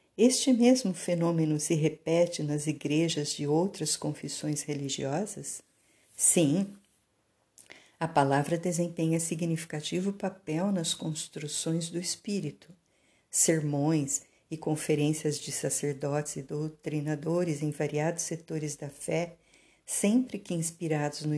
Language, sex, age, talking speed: Portuguese, female, 50-69, 105 wpm